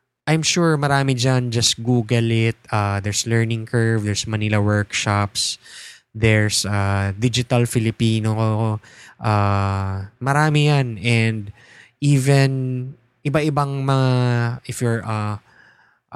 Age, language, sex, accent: 20-39, English, male, Filipino